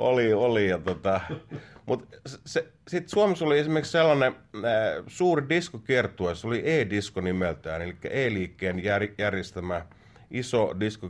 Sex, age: male, 30-49